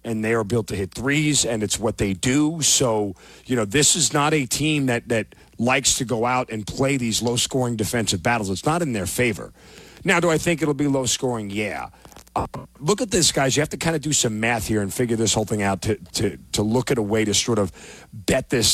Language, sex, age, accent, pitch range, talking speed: English, male, 40-59, American, 105-140 Hz, 245 wpm